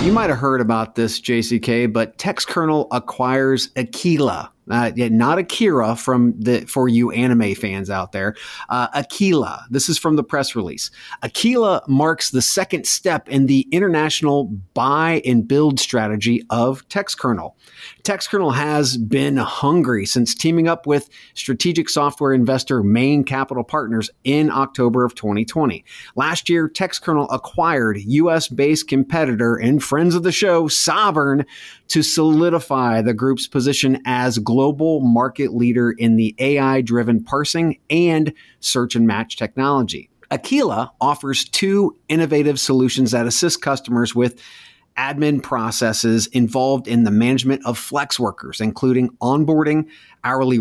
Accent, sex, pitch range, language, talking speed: American, male, 120-155 Hz, English, 130 wpm